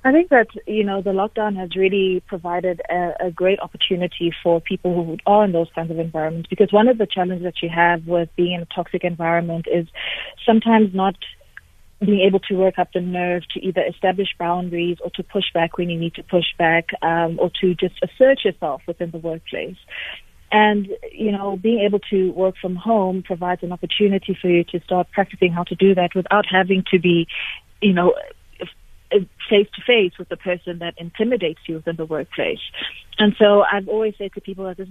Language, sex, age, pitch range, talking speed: English, female, 30-49, 175-200 Hz, 200 wpm